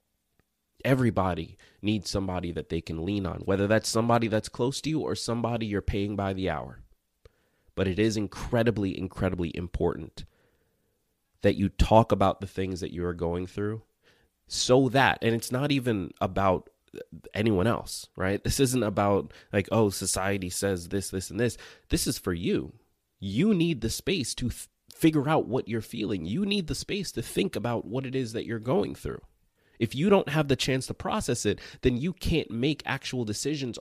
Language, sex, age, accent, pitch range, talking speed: English, male, 30-49, American, 95-120 Hz, 185 wpm